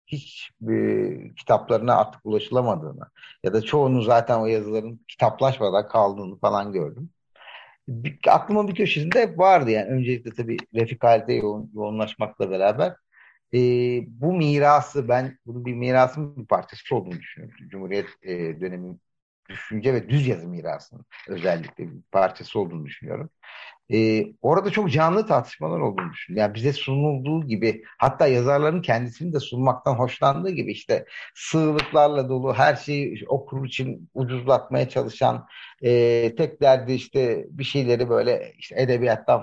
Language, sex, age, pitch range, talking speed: Turkish, male, 50-69, 115-145 Hz, 135 wpm